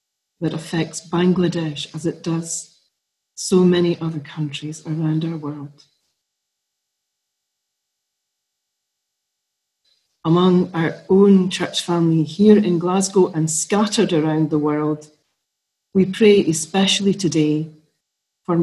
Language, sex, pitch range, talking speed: English, female, 150-185 Hz, 100 wpm